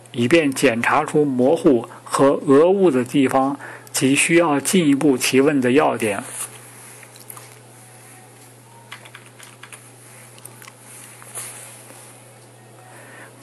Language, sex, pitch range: Chinese, male, 125-155 Hz